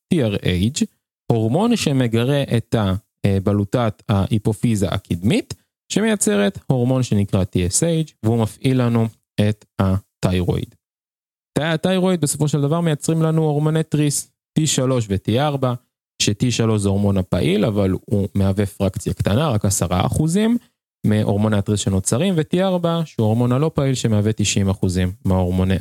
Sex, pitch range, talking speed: male, 100-135 Hz, 115 wpm